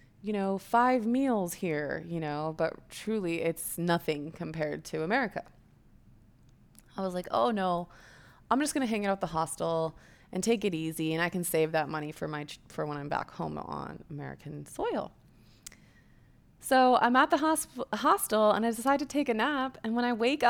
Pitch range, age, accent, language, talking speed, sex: 155-210 Hz, 20-39, American, English, 190 wpm, female